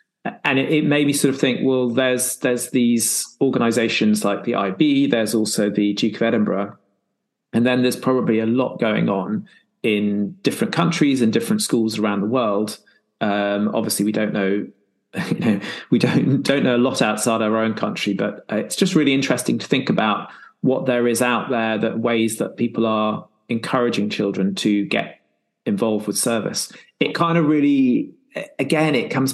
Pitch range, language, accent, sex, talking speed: 110-135 Hz, English, British, male, 180 wpm